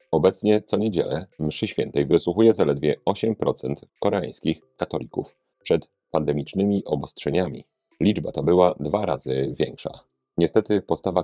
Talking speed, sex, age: 110 wpm, male, 30-49